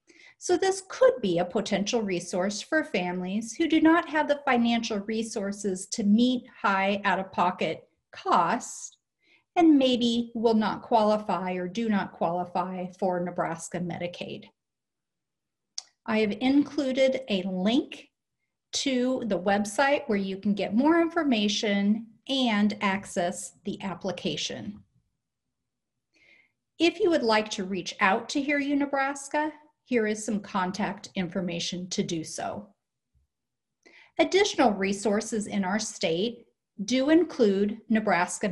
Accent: American